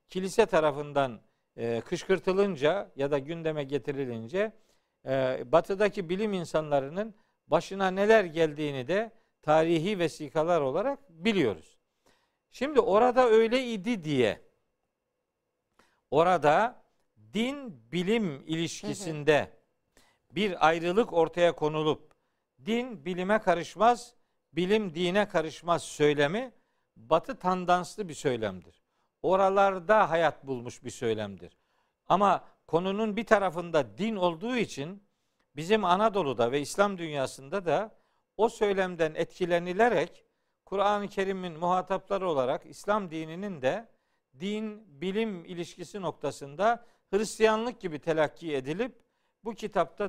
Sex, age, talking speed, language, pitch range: male, 50-69, 90 wpm, Turkish, 155-215 Hz